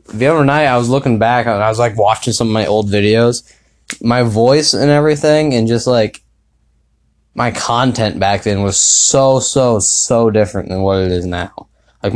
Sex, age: male, 10-29